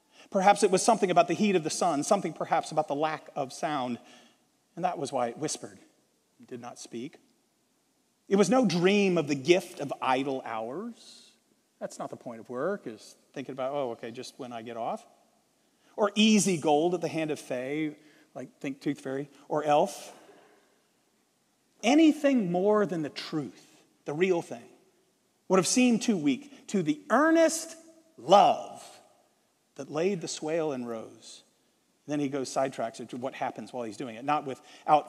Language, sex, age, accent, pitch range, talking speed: English, male, 40-59, American, 140-200 Hz, 180 wpm